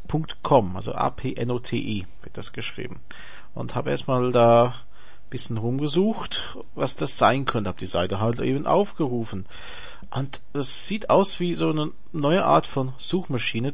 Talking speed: 165 wpm